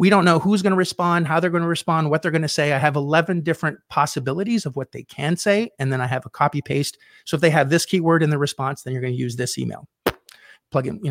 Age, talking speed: 30-49, 285 wpm